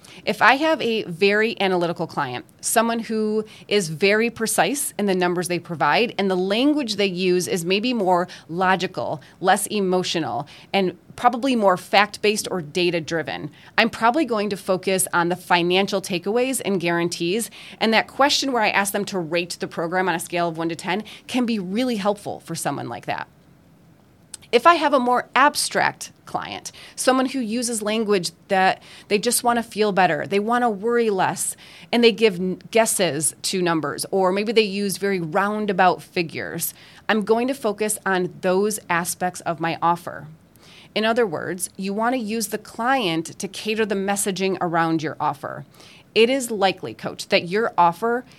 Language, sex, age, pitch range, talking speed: English, female, 30-49, 175-225 Hz, 175 wpm